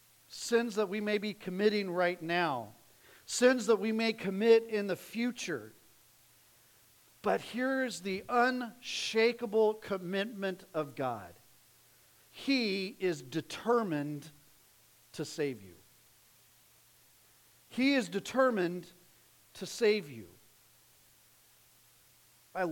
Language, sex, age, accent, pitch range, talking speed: English, male, 50-69, American, 160-240 Hz, 95 wpm